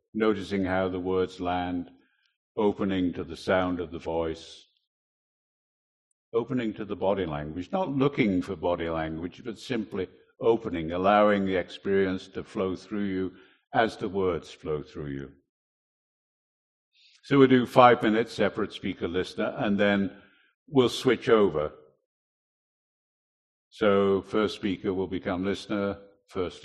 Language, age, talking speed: English, 60-79, 130 wpm